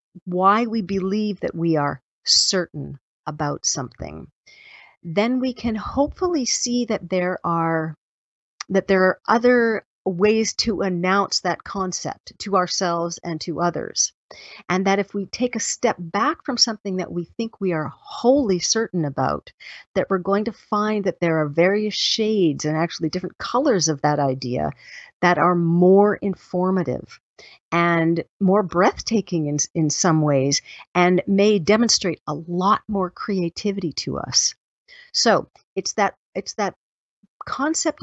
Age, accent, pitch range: 40-59, American, 170-215 Hz